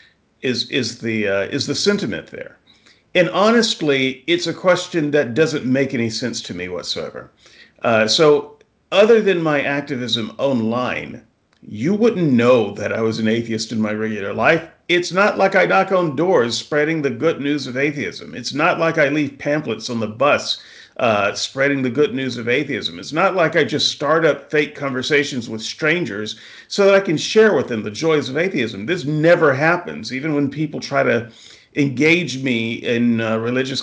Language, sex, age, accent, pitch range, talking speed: English, male, 40-59, American, 120-170 Hz, 185 wpm